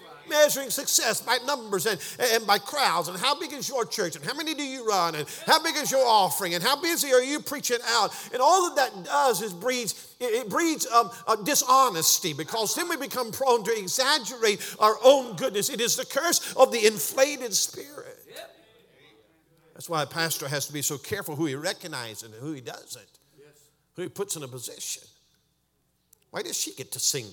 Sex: male